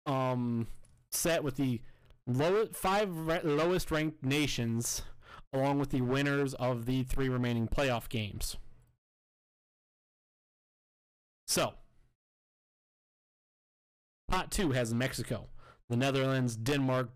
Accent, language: American, English